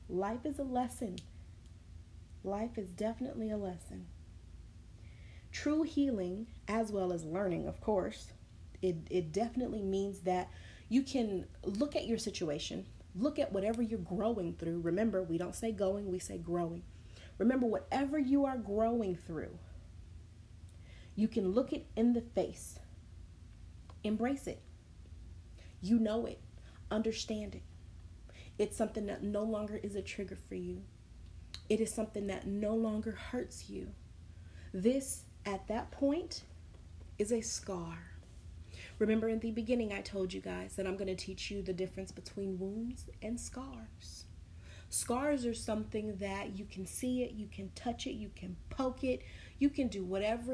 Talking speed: 150 wpm